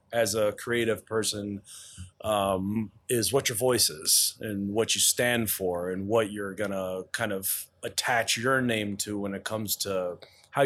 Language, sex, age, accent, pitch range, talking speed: English, male, 30-49, American, 105-125 Hz, 170 wpm